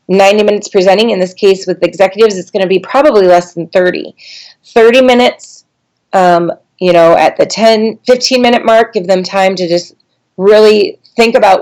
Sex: female